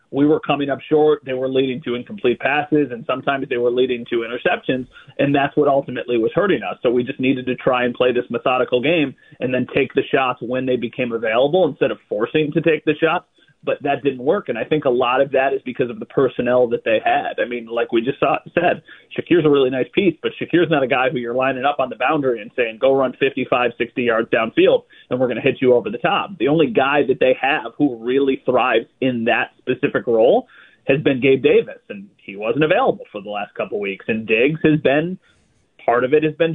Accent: American